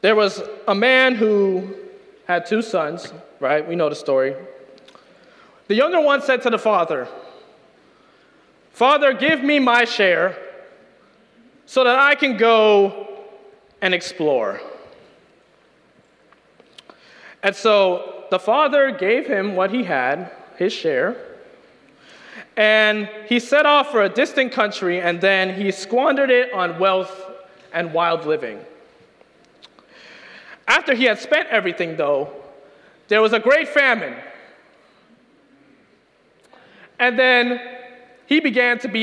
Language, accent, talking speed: English, American, 120 wpm